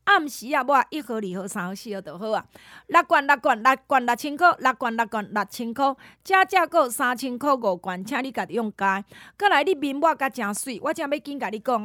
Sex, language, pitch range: female, Chinese, 225-310 Hz